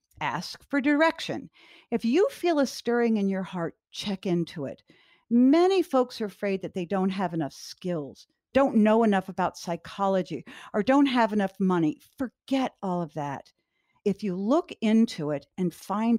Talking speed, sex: 165 wpm, female